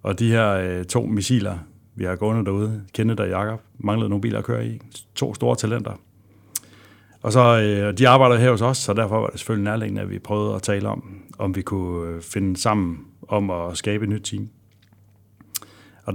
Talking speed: 200 wpm